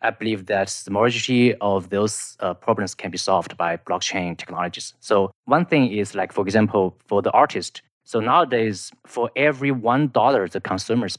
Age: 20-39